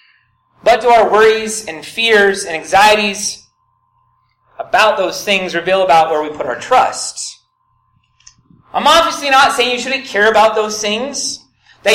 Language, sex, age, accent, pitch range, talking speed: English, male, 30-49, American, 160-255 Hz, 145 wpm